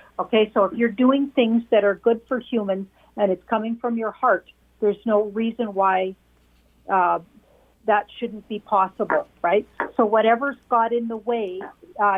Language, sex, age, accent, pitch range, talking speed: English, female, 50-69, American, 200-235 Hz, 170 wpm